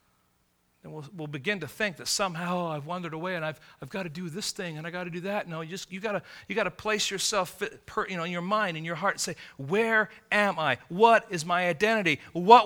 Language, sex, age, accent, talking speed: English, male, 40-59, American, 230 wpm